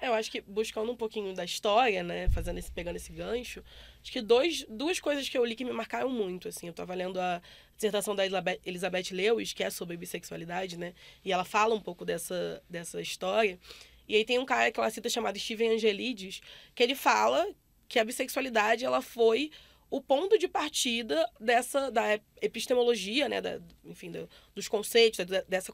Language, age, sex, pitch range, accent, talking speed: Portuguese, 20-39, female, 210-290 Hz, Brazilian, 195 wpm